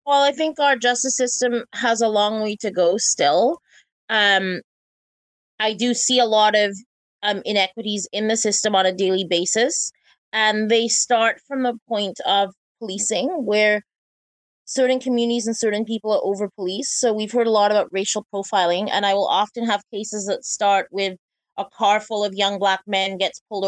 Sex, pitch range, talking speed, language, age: female, 190-220 Hz, 180 wpm, English, 20-39